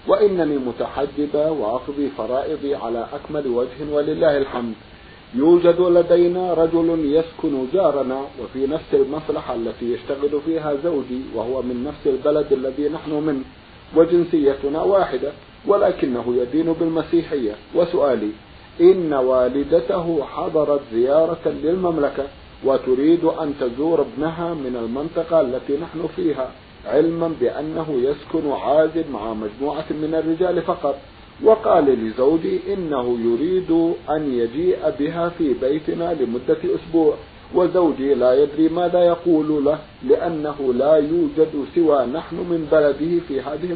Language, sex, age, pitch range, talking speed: Arabic, male, 50-69, 135-170 Hz, 115 wpm